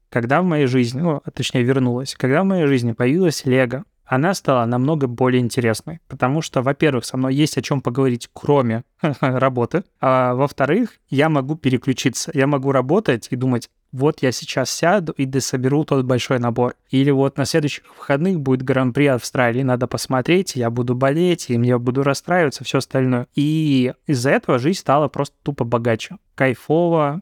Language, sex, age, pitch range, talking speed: Russian, male, 20-39, 125-155 Hz, 170 wpm